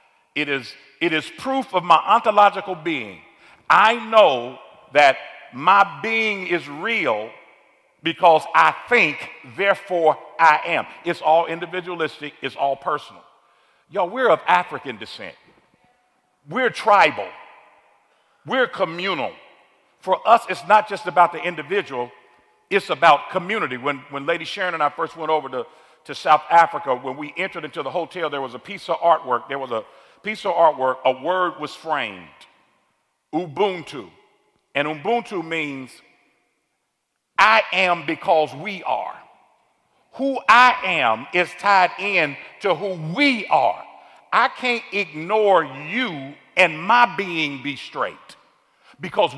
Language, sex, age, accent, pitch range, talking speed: English, male, 50-69, American, 150-200 Hz, 135 wpm